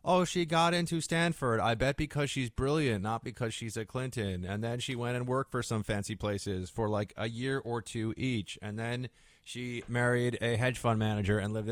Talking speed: 215 wpm